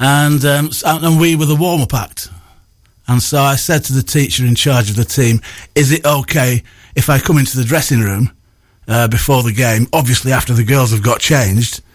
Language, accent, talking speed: English, British, 205 wpm